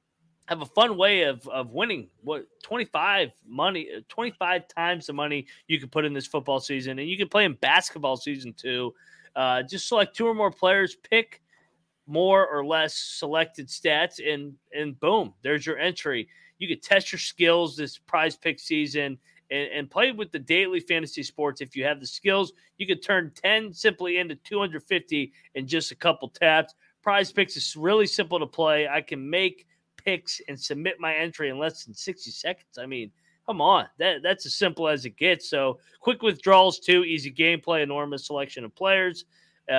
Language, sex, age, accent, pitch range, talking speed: English, male, 30-49, American, 145-185 Hz, 190 wpm